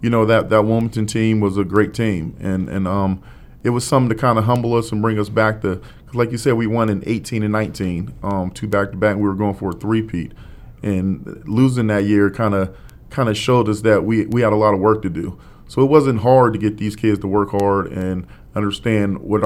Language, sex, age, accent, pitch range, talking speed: English, male, 40-59, American, 100-110 Hz, 250 wpm